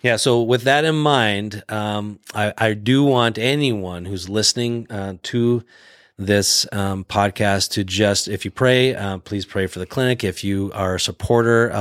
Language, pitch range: English, 95-115 Hz